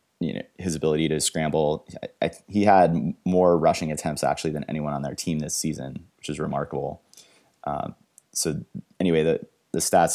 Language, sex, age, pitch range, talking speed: English, male, 30-49, 75-85 Hz, 175 wpm